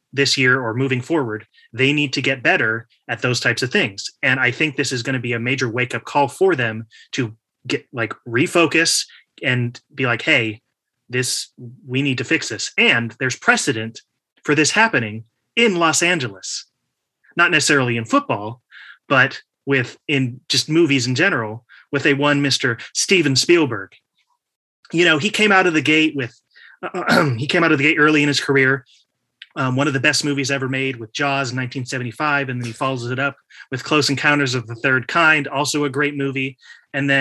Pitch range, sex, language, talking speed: 125-150 Hz, male, English, 195 wpm